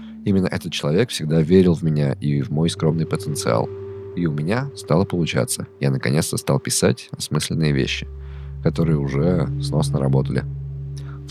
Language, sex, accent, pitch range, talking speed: Russian, male, native, 70-110 Hz, 150 wpm